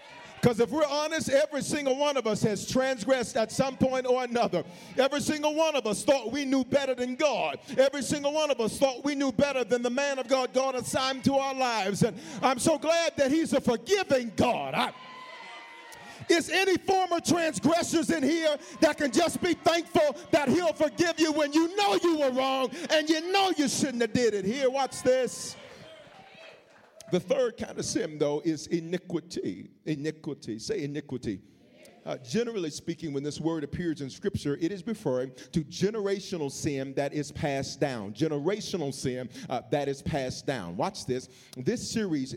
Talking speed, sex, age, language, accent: 180 wpm, male, 50-69, English, American